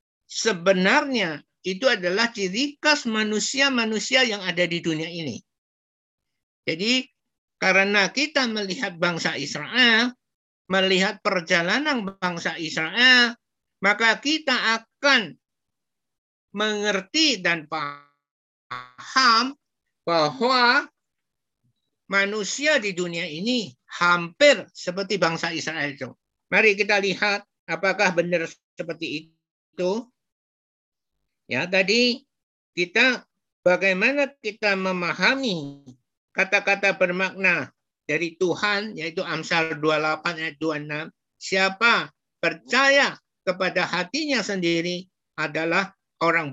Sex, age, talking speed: male, 50-69, 85 wpm